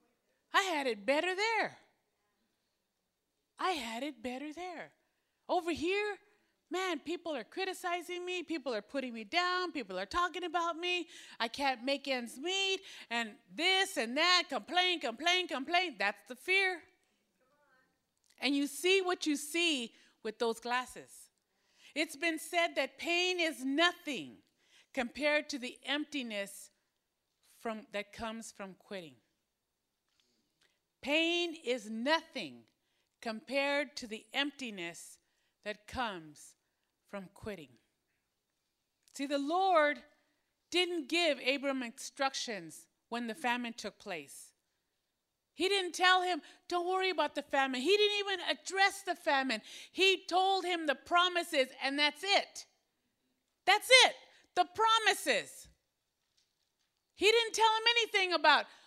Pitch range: 255-360 Hz